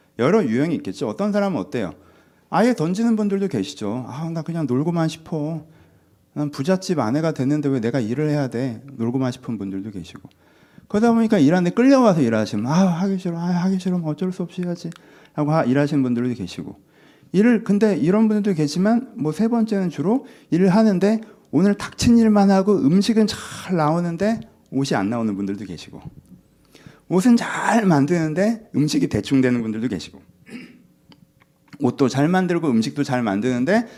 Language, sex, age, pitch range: Korean, male, 40-59, 125-195 Hz